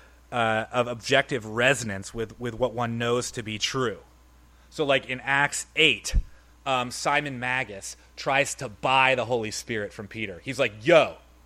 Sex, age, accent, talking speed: male, 30-49, American, 155 wpm